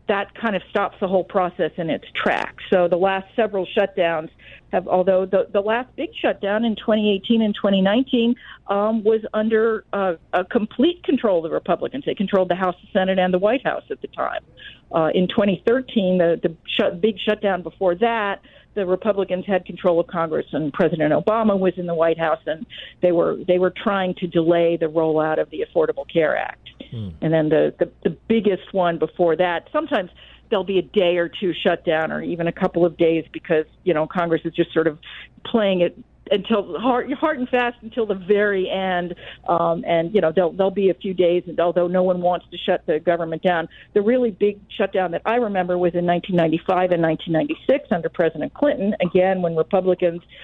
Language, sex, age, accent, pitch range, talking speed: English, female, 50-69, American, 170-210 Hz, 200 wpm